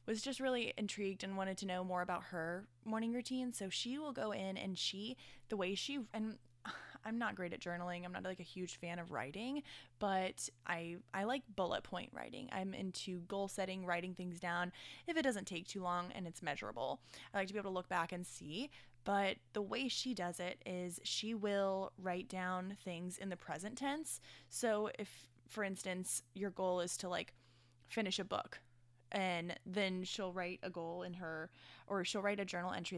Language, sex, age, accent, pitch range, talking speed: English, female, 10-29, American, 175-205 Hz, 205 wpm